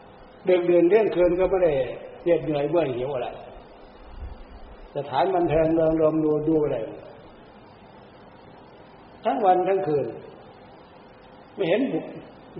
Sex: male